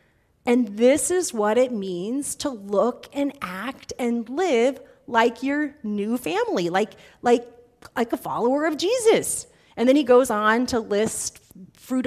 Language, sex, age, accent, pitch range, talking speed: English, female, 30-49, American, 205-270 Hz, 155 wpm